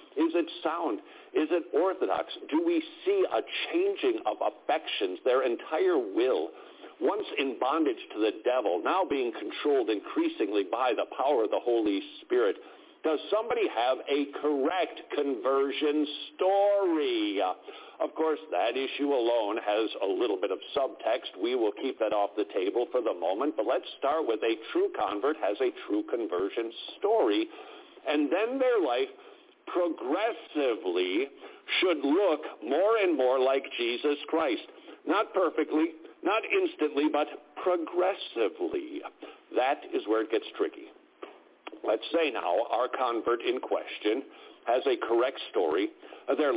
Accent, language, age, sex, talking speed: American, English, 50-69, male, 140 wpm